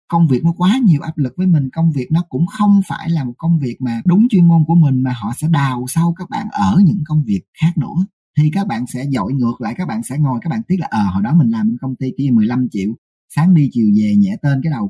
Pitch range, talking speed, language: 130-195 Hz, 285 wpm, Vietnamese